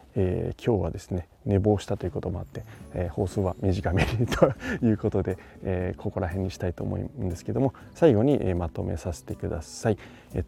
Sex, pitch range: male, 95-115 Hz